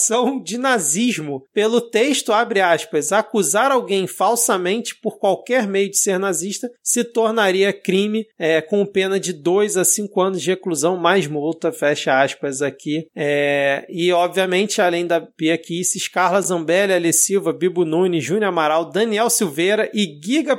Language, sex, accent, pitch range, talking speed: Portuguese, male, Brazilian, 180-240 Hz, 145 wpm